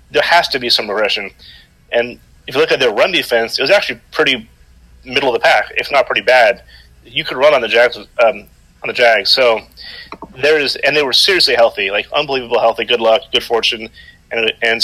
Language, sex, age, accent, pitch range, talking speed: English, male, 30-49, American, 105-135 Hz, 215 wpm